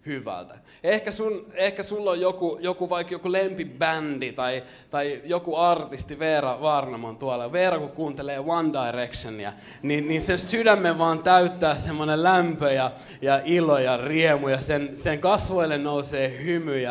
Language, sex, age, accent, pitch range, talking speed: Finnish, male, 20-39, native, 105-160 Hz, 150 wpm